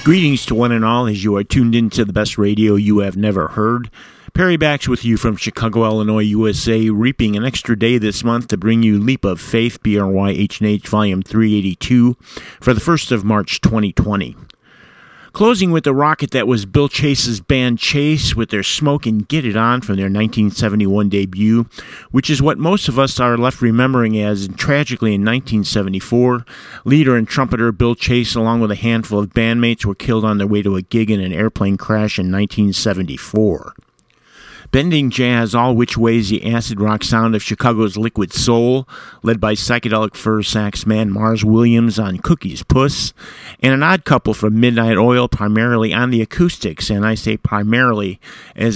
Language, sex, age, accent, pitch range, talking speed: English, male, 50-69, American, 105-125 Hz, 180 wpm